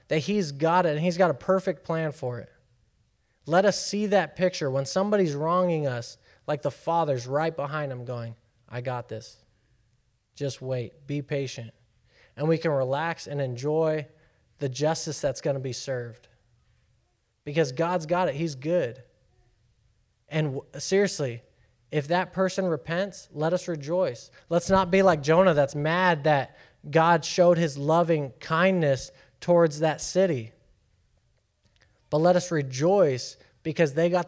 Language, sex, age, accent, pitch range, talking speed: English, male, 20-39, American, 130-180 Hz, 150 wpm